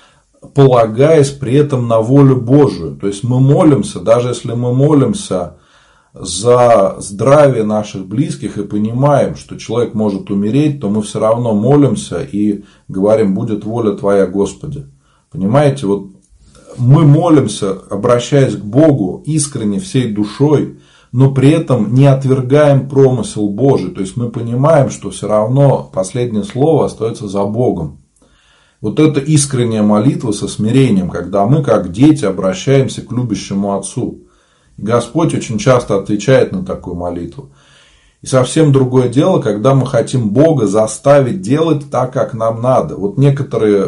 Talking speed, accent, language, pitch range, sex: 140 wpm, native, Russian, 105-140 Hz, male